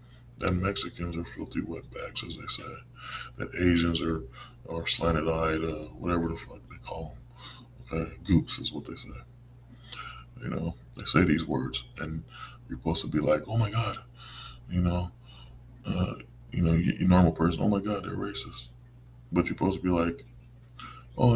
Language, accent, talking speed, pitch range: English, American, 165 wpm, 75-105 Hz